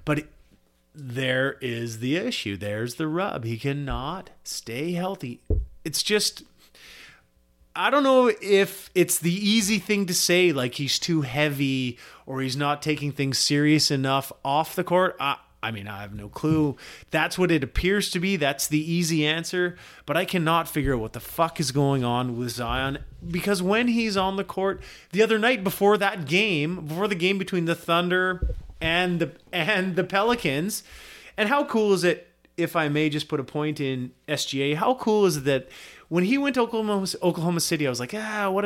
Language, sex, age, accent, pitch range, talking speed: English, male, 30-49, American, 135-195 Hz, 190 wpm